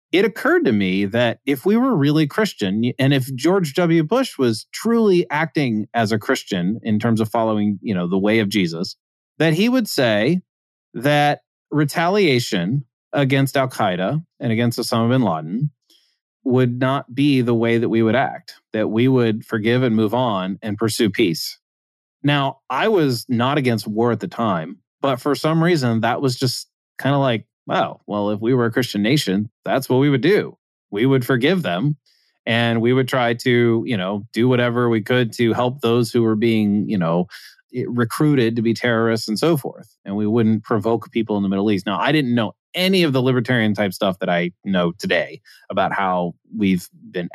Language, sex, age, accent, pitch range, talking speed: English, male, 30-49, American, 110-140 Hz, 195 wpm